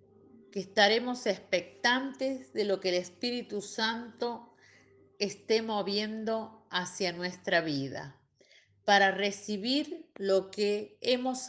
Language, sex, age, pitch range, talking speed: Spanish, female, 40-59, 175-245 Hz, 100 wpm